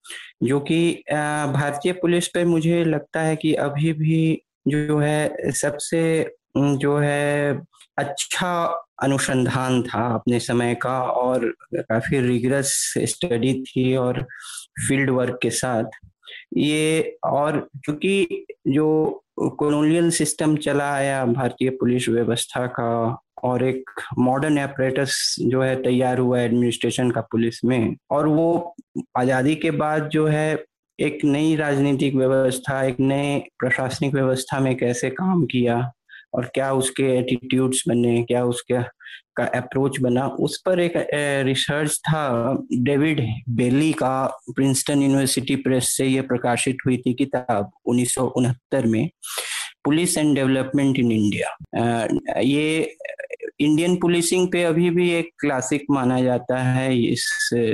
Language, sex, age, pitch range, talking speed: Hindi, male, 20-39, 125-155 Hz, 125 wpm